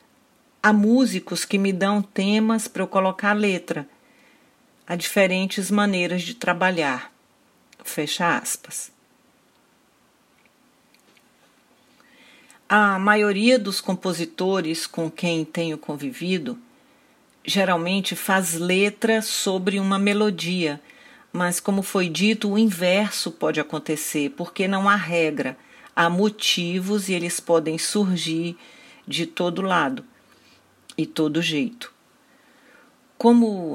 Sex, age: female, 50-69